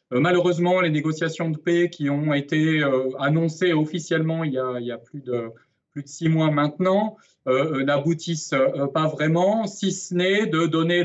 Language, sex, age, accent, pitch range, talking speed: French, male, 30-49, French, 135-170 Hz, 165 wpm